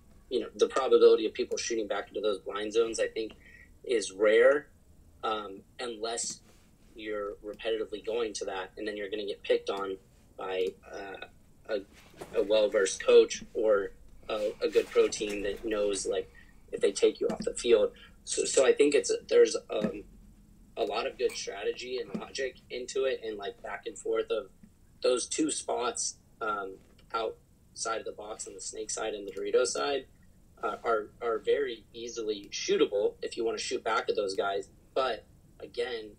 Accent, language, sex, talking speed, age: American, English, male, 180 wpm, 30-49